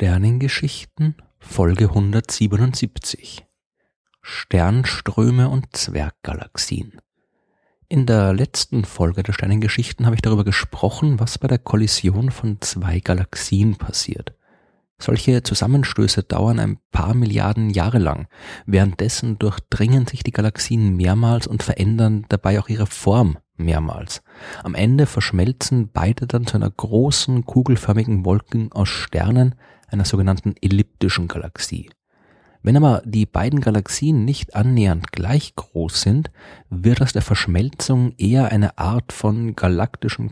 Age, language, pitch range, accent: 30-49, German, 95-120 Hz, German